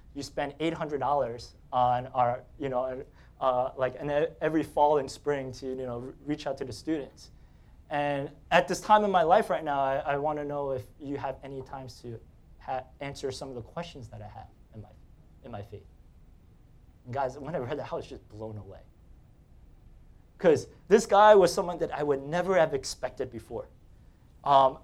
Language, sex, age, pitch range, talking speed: English, male, 20-39, 125-180 Hz, 190 wpm